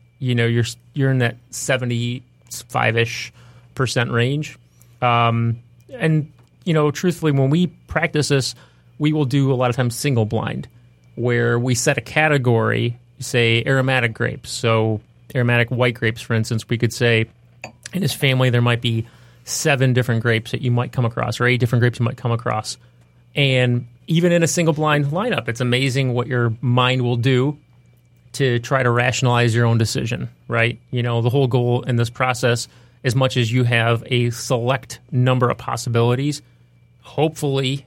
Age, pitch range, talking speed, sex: 30-49, 120-130 Hz, 170 wpm, male